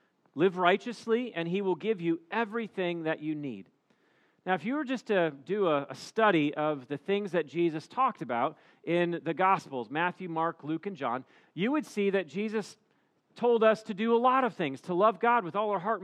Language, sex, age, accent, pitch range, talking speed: English, male, 40-59, American, 160-210 Hz, 210 wpm